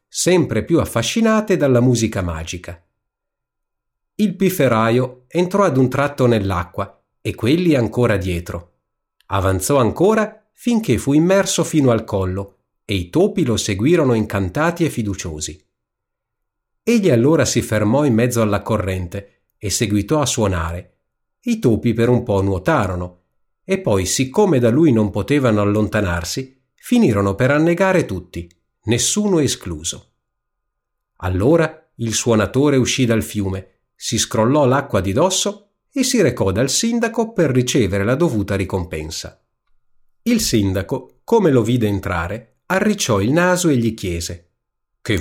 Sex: male